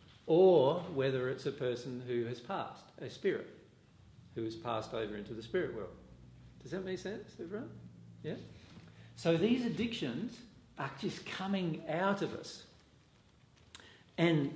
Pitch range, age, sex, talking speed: 120-170 Hz, 50-69, male, 140 wpm